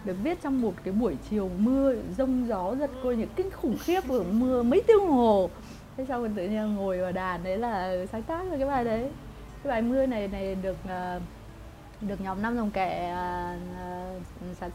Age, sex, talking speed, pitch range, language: 20-39, female, 205 wpm, 220-300 Hz, Vietnamese